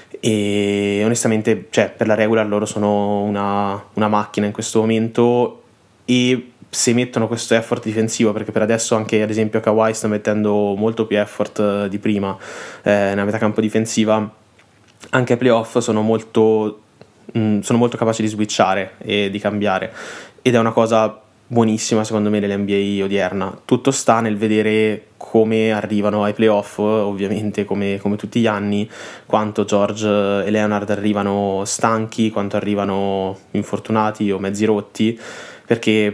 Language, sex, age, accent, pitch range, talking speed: Italian, male, 20-39, native, 100-110 Hz, 140 wpm